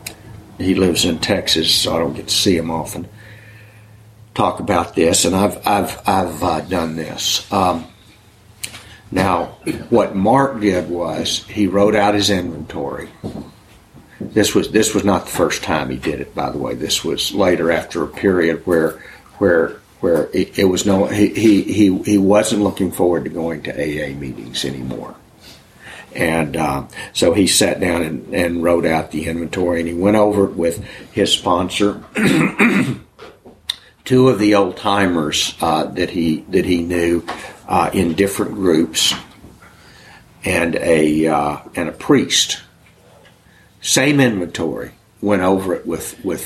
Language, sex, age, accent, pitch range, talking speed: English, male, 60-79, American, 85-105 Hz, 155 wpm